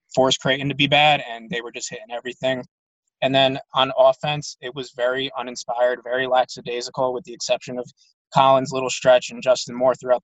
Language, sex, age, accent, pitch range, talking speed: English, male, 20-39, American, 125-155 Hz, 190 wpm